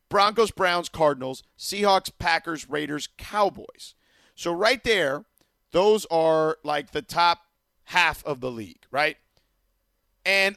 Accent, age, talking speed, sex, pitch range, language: American, 40-59, 120 wpm, male, 140-225 Hz, English